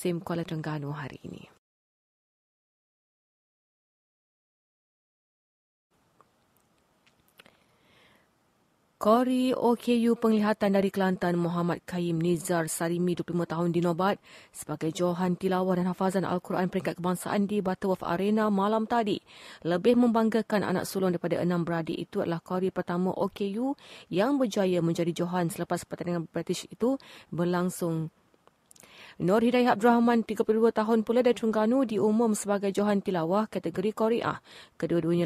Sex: female